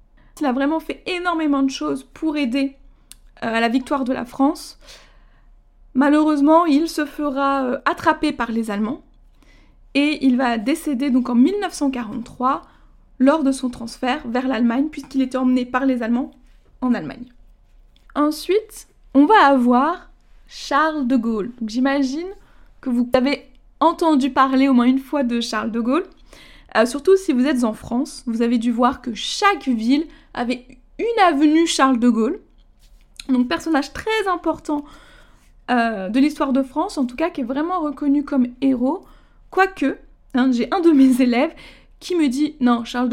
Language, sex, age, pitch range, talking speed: French, female, 20-39, 250-305 Hz, 160 wpm